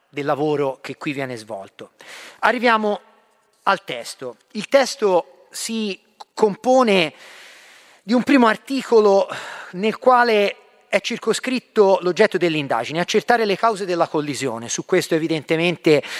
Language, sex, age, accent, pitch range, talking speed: Italian, male, 40-59, native, 150-205 Hz, 115 wpm